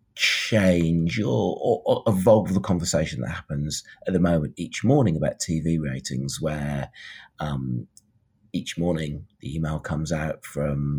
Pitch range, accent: 70-90 Hz, British